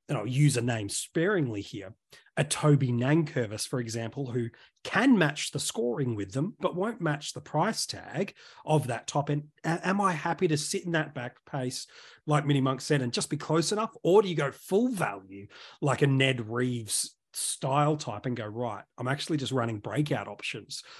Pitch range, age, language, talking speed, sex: 125-155 Hz, 30-49, English, 195 wpm, male